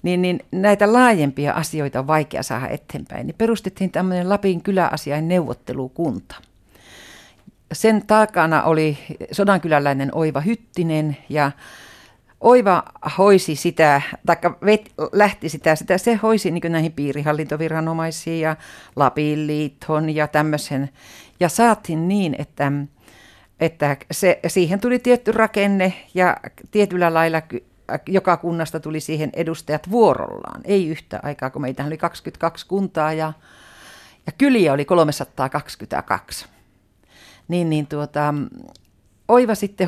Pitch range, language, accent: 145-185 Hz, Finnish, native